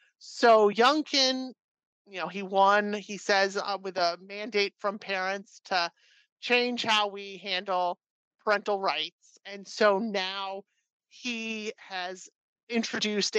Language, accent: English, American